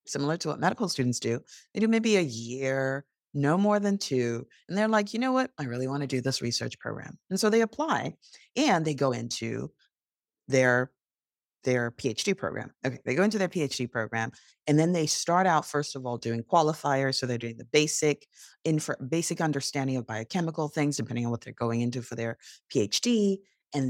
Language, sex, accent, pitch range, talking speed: English, female, American, 125-180 Hz, 195 wpm